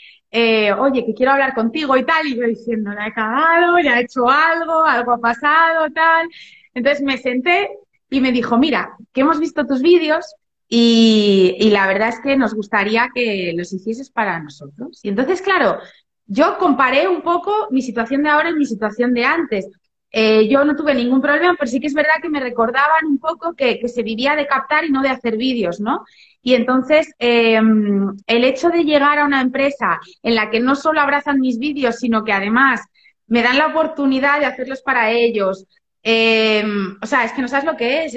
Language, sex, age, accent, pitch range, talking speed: Spanish, female, 20-39, Spanish, 225-295 Hz, 205 wpm